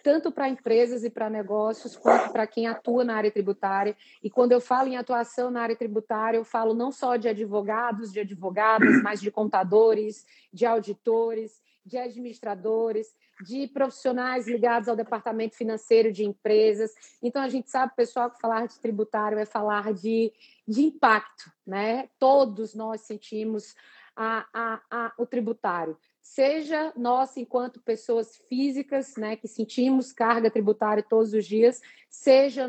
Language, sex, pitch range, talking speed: Portuguese, female, 220-250 Hz, 145 wpm